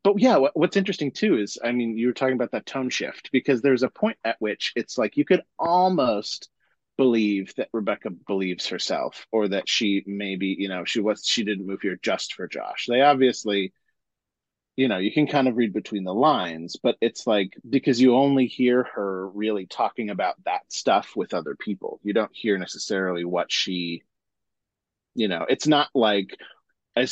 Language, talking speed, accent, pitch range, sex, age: English, 190 wpm, American, 100-130 Hz, male, 30-49